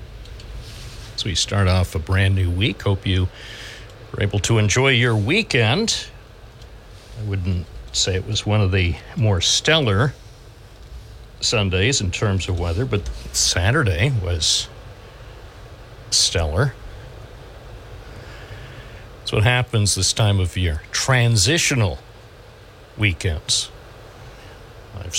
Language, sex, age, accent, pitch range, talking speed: English, male, 60-79, American, 100-115 Hz, 105 wpm